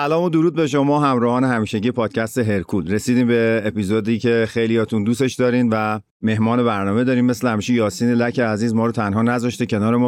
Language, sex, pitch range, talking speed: Persian, male, 105-130 Hz, 180 wpm